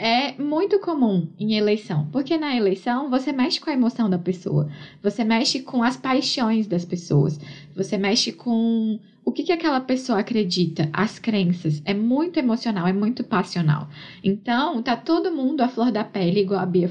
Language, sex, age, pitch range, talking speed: Portuguese, female, 10-29, 185-260 Hz, 175 wpm